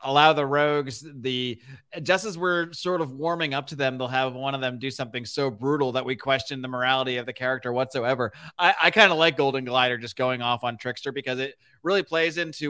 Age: 30-49